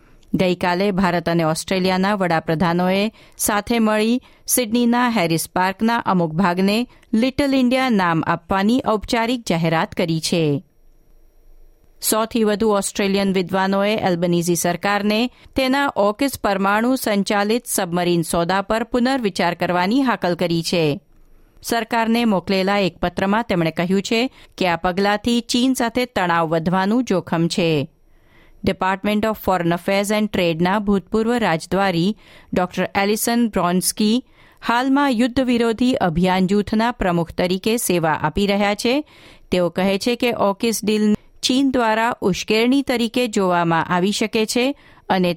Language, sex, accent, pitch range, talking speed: Gujarati, female, native, 180-230 Hz, 100 wpm